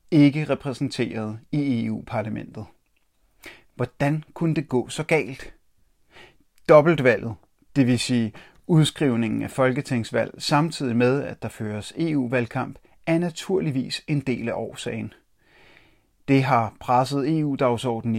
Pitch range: 115-150 Hz